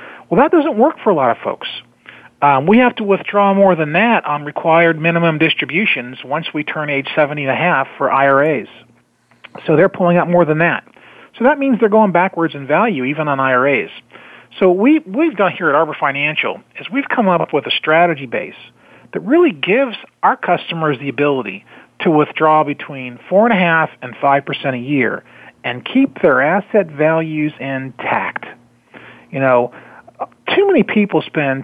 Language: English